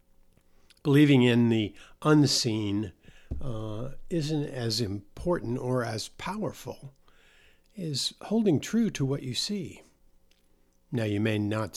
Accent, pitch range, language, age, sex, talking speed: American, 90-130 Hz, English, 50-69, male, 110 wpm